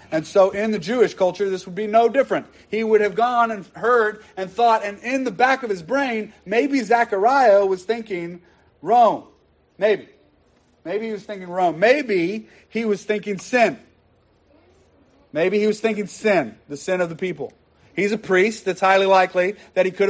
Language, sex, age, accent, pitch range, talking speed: English, male, 30-49, American, 175-215 Hz, 180 wpm